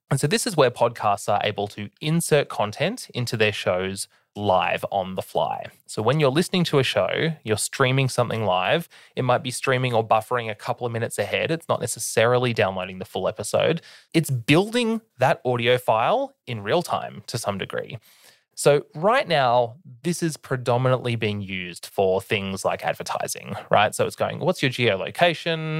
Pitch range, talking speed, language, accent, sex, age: 115-160 Hz, 180 wpm, English, Australian, male, 20-39